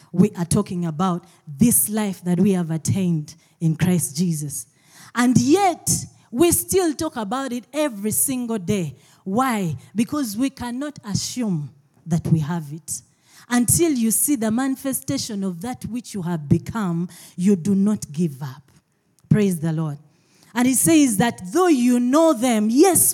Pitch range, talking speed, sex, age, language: 160-255 Hz, 155 wpm, female, 30-49, English